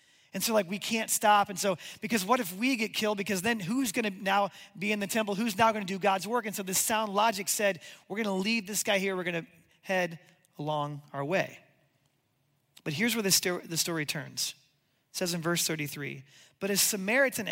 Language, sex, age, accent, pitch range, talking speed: English, male, 30-49, American, 175-220 Hz, 225 wpm